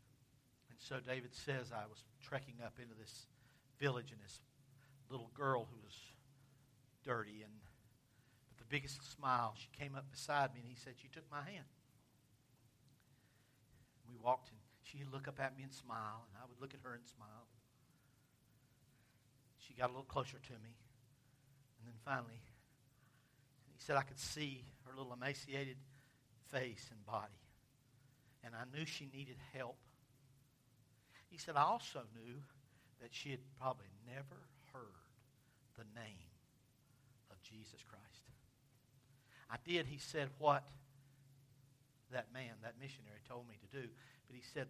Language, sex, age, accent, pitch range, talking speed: English, male, 60-79, American, 120-135 Hz, 150 wpm